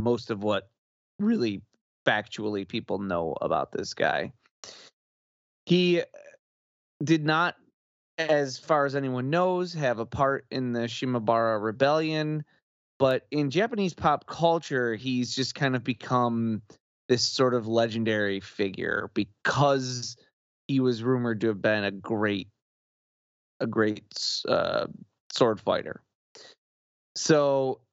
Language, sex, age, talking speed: English, male, 20-39, 120 wpm